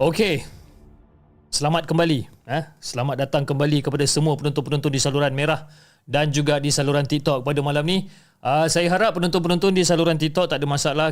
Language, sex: Malay, male